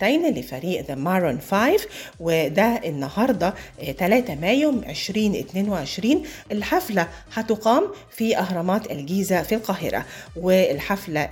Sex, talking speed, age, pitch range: female, 90 wpm, 30-49, 165-220 Hz